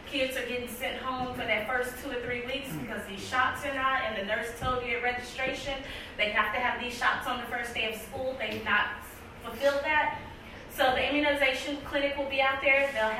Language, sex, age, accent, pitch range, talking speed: English, female, 20-39, American, 235-275 Hz, 225 wpm